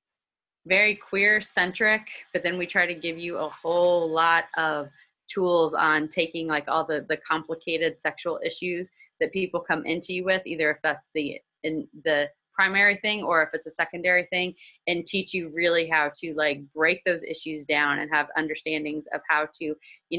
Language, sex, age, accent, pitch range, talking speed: English, female, 20-39, American, 145-170 Hz, 185 wpm